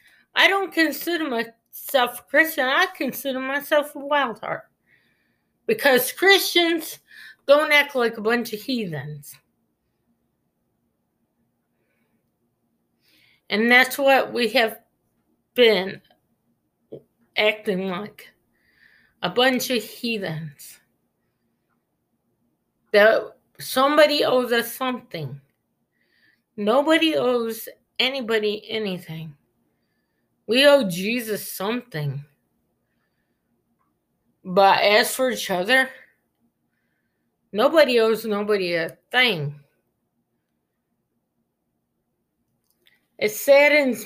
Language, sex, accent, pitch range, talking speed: English, female, American, 195-265 Hz, 80 wpm